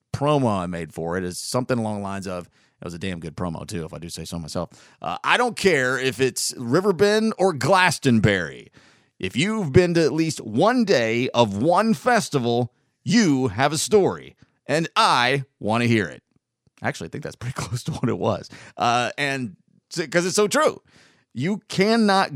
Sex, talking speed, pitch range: male, 195 wpm, 120-185 Hz